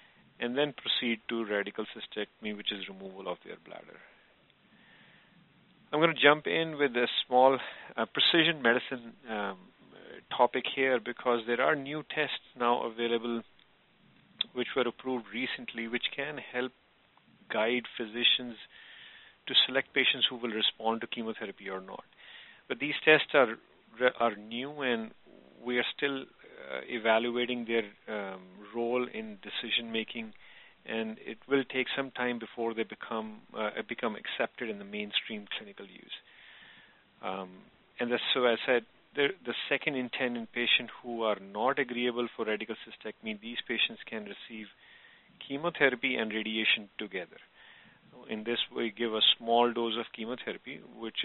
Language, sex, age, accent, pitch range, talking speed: English, male, 40-59, Indian, 110-130 Hz, 150 wpm